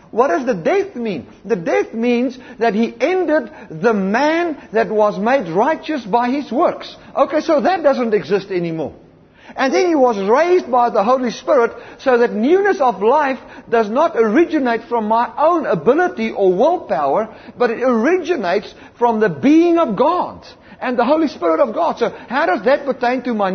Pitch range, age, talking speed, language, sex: 225-305 Hz, 50-69, 180 wpm, English, male